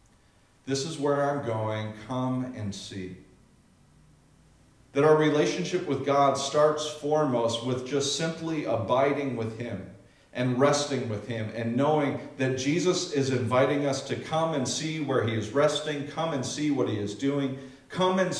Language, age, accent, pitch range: English, 40-59, American, 115-145 Hz